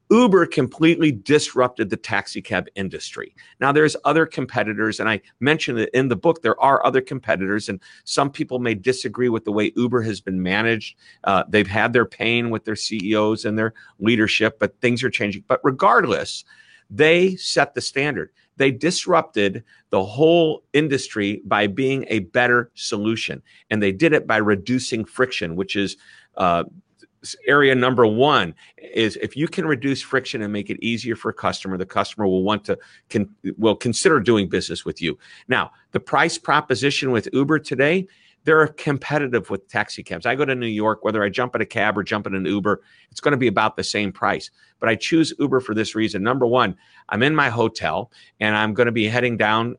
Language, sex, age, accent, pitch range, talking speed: English, male, 50-69, American, 105-135 Hz, 190 wpm